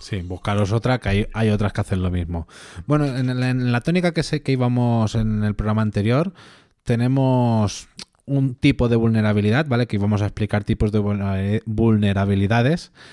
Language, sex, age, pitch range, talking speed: Spanish, male, 20-39, 105-145 Hz, 160 wpm